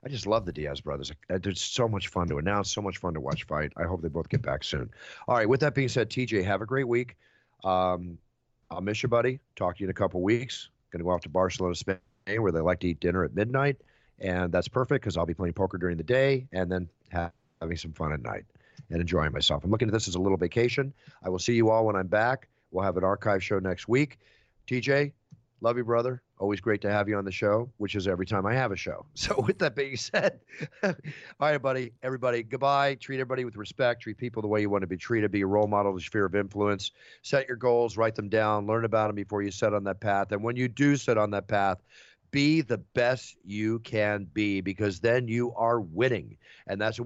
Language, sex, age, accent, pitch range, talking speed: English, male, 40-59, American, 95-120 Hz, 250 wpm